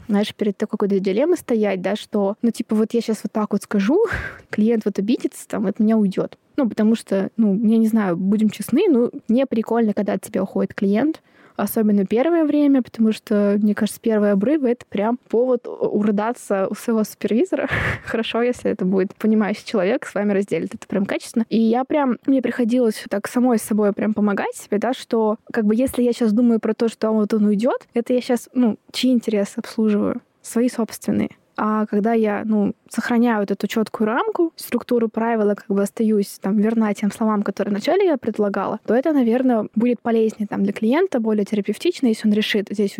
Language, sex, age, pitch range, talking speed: Russian, female, 20-39, 210-245 Hz, 195 wpm